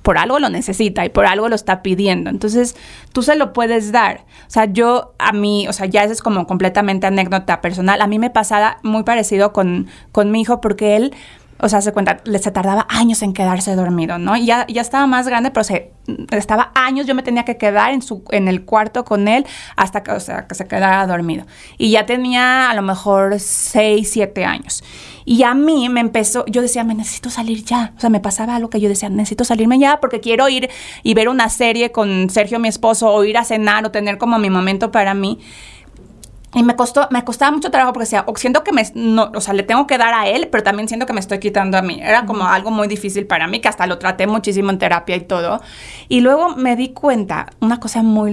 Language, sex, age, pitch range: Spanish, female, 20-39, 205-240 Hz